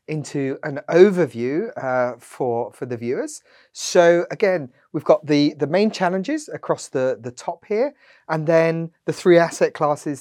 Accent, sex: British, male